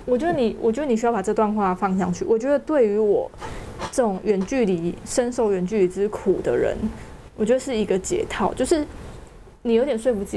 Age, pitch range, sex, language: 20-39, 195-240 Hz, female, Chinese